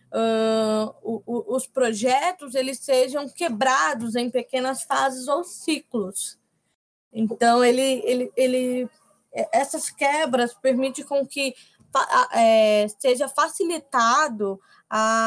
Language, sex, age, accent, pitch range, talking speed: Portuguese, female, 10-29, Brazilian, 230-280 Hz, 100 wpm